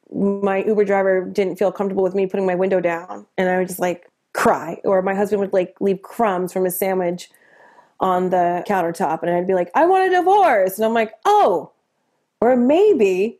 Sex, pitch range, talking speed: female, 195-260 Hz, 200 wpm